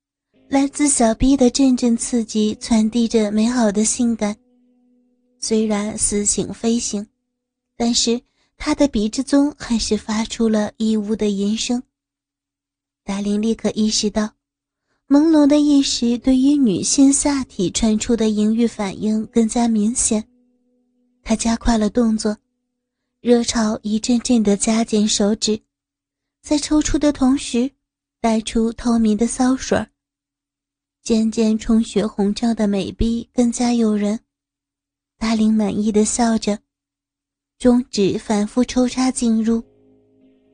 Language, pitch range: Chinese, 205-245 Hz